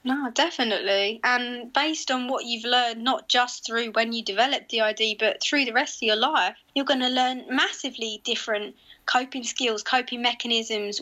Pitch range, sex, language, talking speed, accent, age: 215-255 Hz, female, English, 180 wpm, British, 20-39